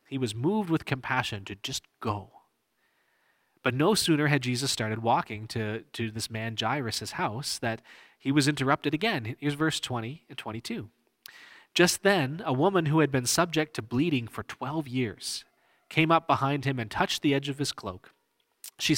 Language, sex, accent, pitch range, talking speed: English, male, American, 110-150 Hz, 175 wpm